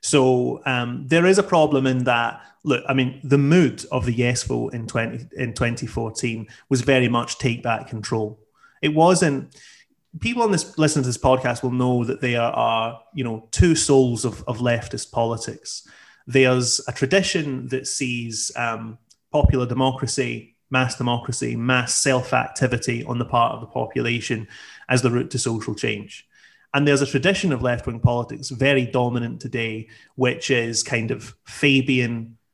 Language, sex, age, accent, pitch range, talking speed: English, male, 30-49, British, 115-135 Hz, 160 wpm